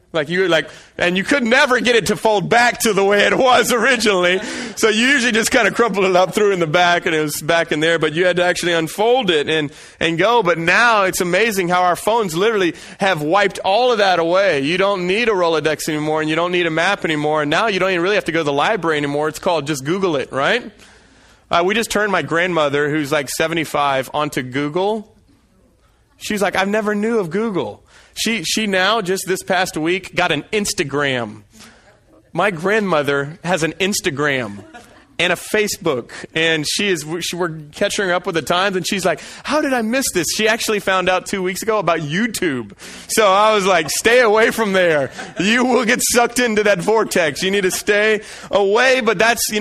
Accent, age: American, 30-49